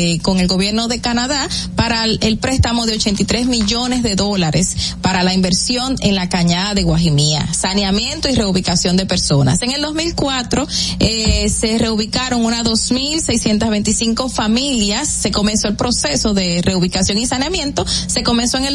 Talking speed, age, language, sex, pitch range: 150 wpm, 30-49, Spanish, female, 195-255 Hz